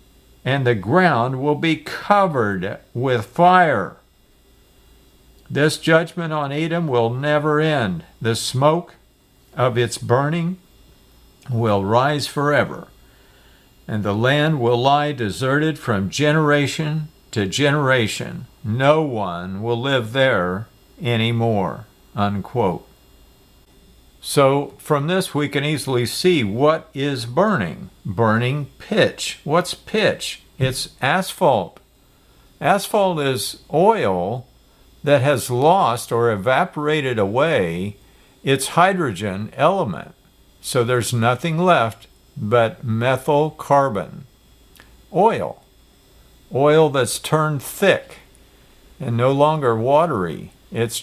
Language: English